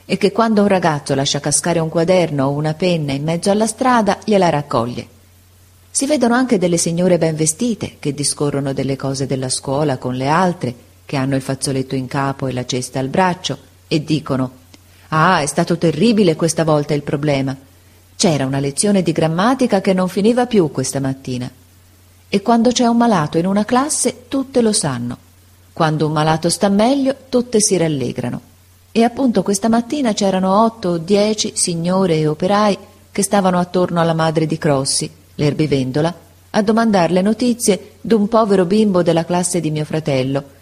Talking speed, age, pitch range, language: 170 wpm, 40-59, 135-205 Hz, Italian